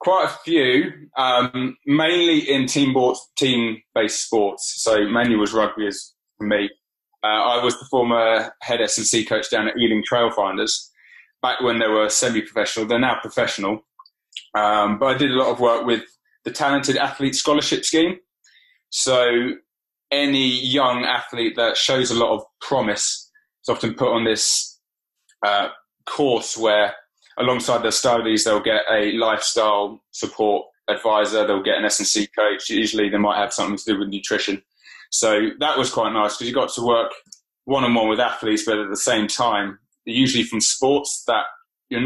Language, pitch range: English, 105-130 Hz